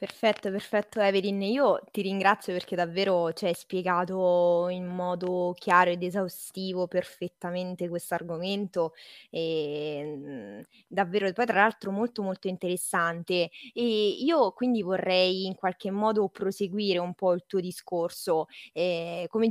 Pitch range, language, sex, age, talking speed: 175-195 Hz, Italian, female, 20-39, 125 wpm